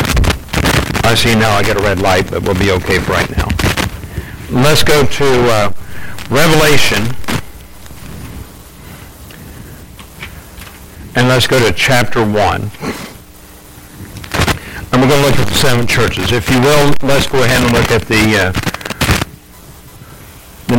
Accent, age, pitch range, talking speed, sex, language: American, 60-79, 105-135 Hz, 135 wpm, male, English